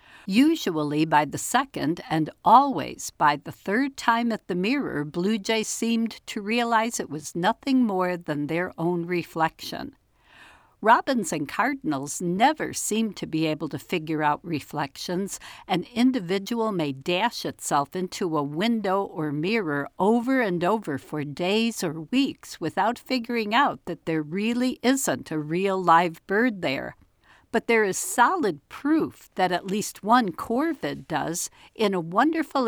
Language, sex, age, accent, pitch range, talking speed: English, female, 60-79, American, 160-230 Hz, 150 wpm